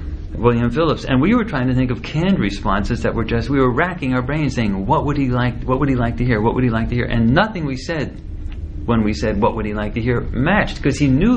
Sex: male